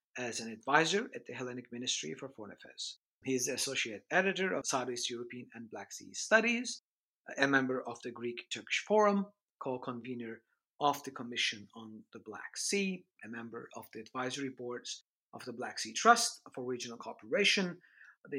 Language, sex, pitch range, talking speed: English, male, 115-150 Hz, 165 wpm